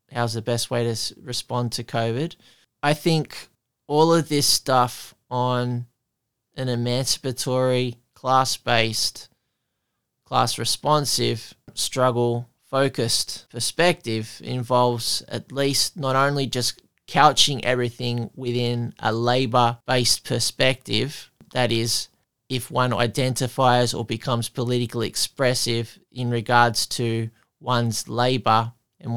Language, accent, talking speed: English, Australian, 100 wpm